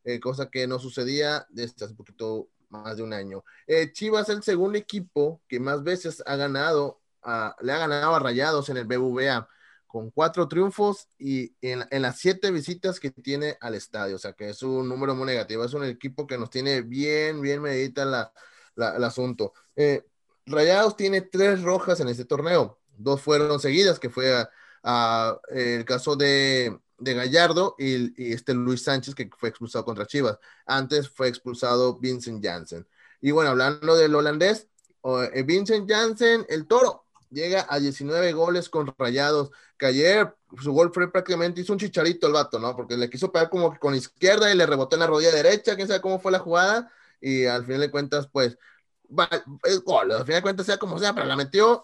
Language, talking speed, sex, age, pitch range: Spanish, 195 wpm, male, 30-49, 125-180 Hz